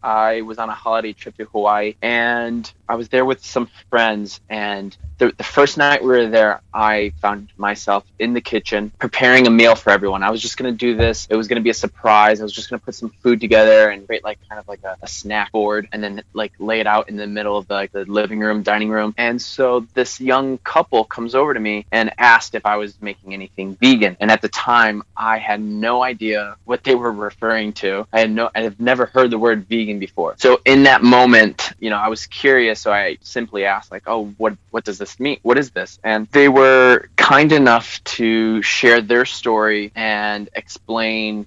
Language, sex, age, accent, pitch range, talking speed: English, male, 20-39, American, 105-120 Hz, 230 wpm